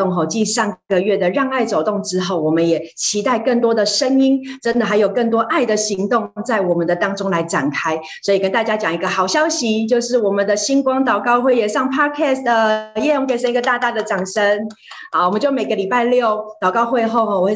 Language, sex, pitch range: Chinese, female, 175-225 Hz